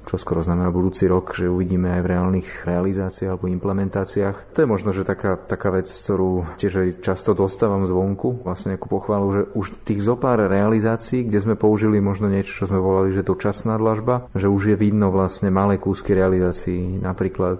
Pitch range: 90-105 Hz